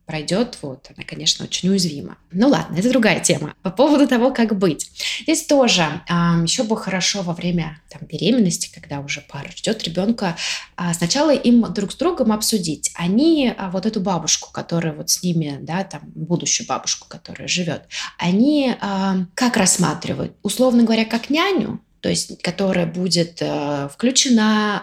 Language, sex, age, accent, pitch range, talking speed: Russian, female, 20-39, native, 170-235 Hz, 160 wpm